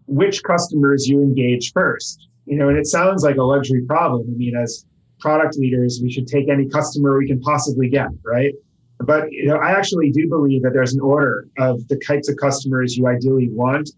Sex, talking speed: male, 205 wpm